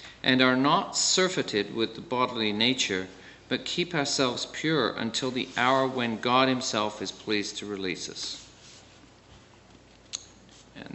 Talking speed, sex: 130 wpm, male